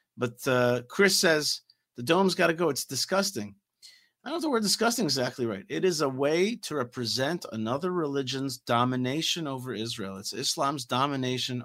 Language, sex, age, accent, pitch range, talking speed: English, male, 40-59, American, 120-145 Hz, 165 wpm